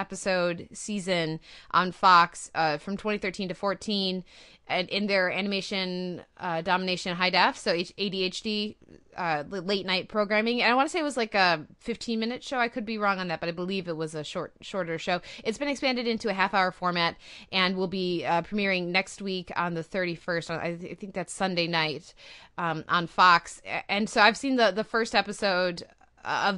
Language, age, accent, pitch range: English, 20-39, American, 170-205 Hz